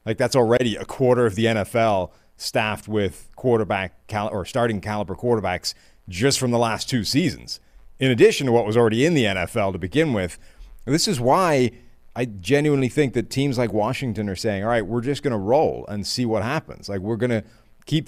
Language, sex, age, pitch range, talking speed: English, male, 30-49, 100-125 Hz, 200 wpm